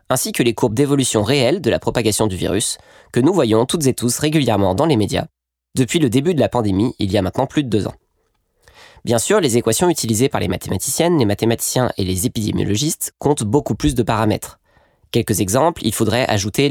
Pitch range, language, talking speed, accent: 105-140 Hz, French, 210 wpm, French